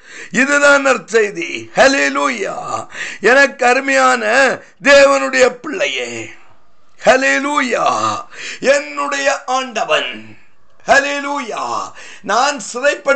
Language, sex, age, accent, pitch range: Tamil, male, 50-69, native, 250-285 Hz